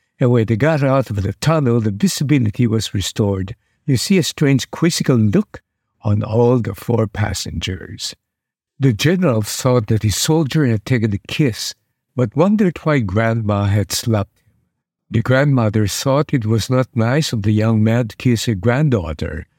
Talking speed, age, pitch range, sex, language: 170 wpm, 60-79, 110-135 Hz, male, English